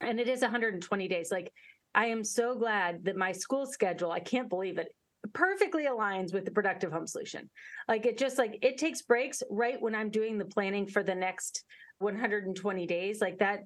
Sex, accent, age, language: female, American, 30-49, English